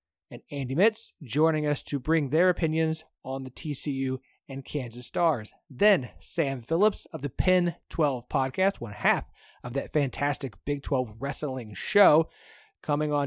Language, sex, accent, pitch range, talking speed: English, male, American, 130-170 Hz, 155 wpm